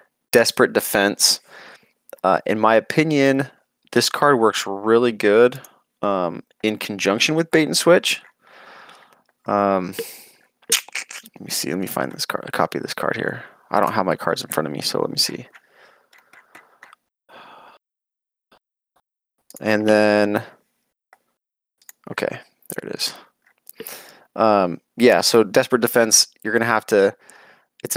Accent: American